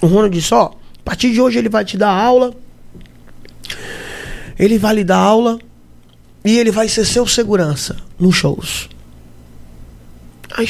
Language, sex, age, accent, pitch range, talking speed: Portuguese, male, 20-39, Brazilian, 150-245 Hz, 150 wpm